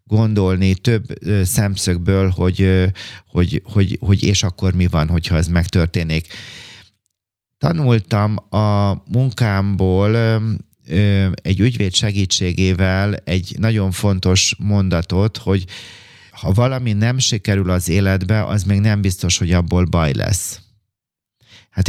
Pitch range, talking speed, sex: 95-110 Hz, 120 wpm, male